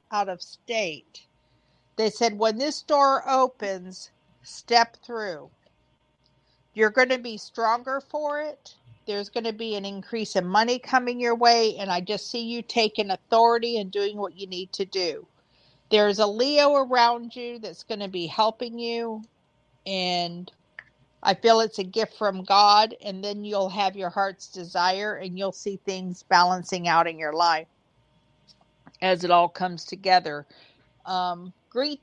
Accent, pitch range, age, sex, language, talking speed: American, 185-235 Hz, 50-69, female, English, 160 wpm